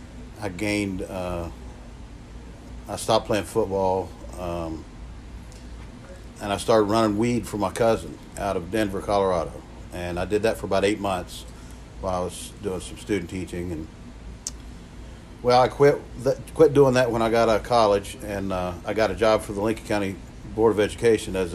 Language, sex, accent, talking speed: English, male, American, 175 wpm